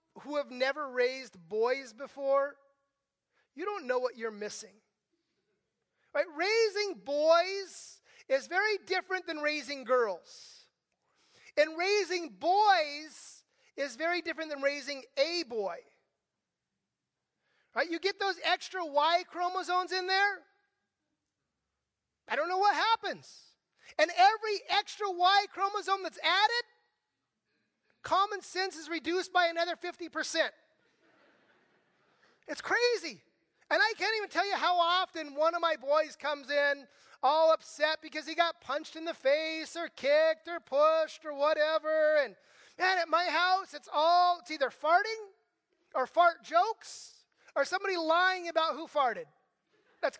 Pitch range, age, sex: 295-375 Hz, 30-49, male